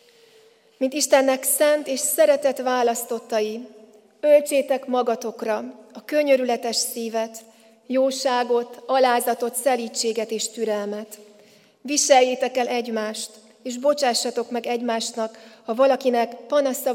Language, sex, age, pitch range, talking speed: Hungarian, female, 30-49, 225-260 Hz, 90 wpm